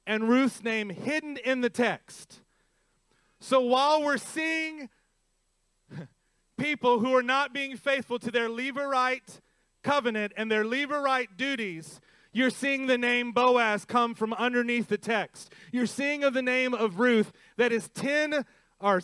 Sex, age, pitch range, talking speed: male, 30-49, 215-260 Hz, 145 wpm